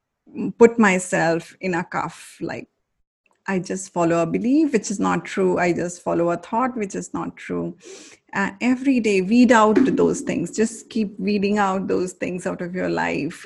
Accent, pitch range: Indian, 185-230 Hz